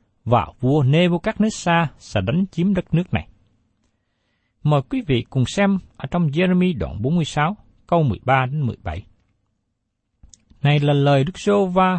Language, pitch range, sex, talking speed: Vietnamese, 110-185 Hz, male, 130 wpm